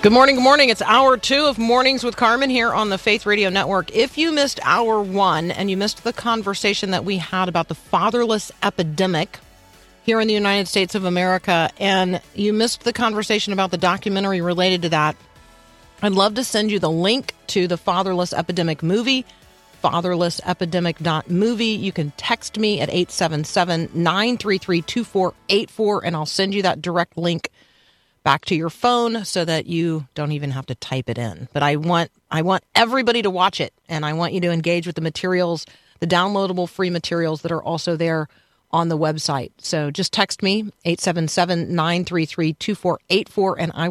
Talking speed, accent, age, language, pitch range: 175 wpm, American, 40-59, English, 165-210 Hz